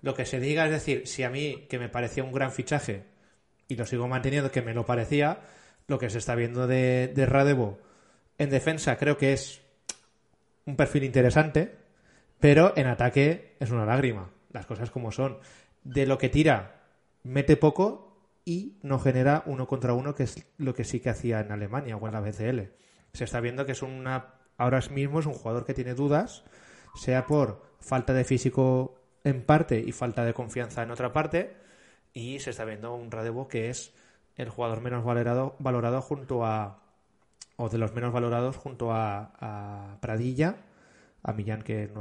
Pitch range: 115-135 Hz